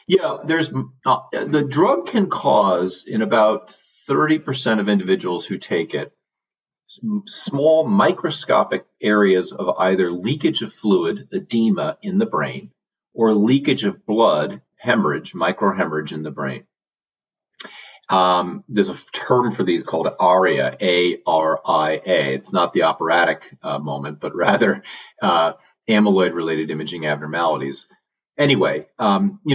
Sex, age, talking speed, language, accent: male, 40-59, 125 wpm, English, American